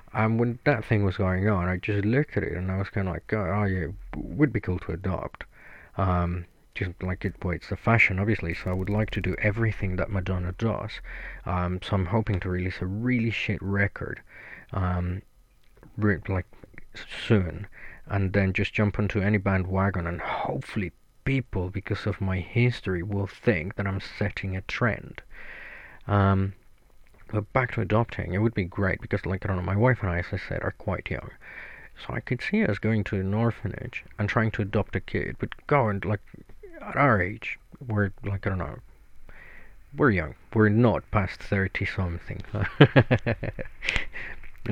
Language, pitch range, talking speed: English, 95-110 Hz, 185 wpm